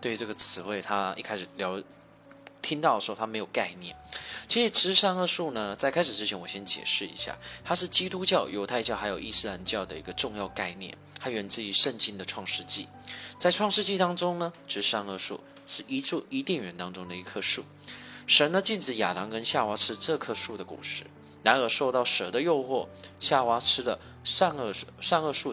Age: 20-39